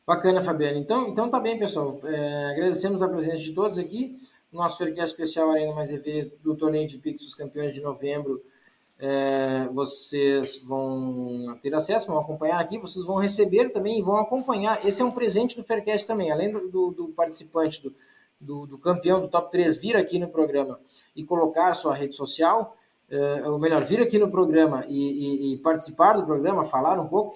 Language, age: Portuguese, 20-39